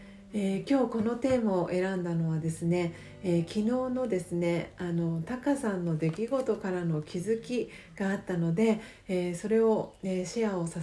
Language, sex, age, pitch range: Japanese, female, 40-59, 170-220 Hz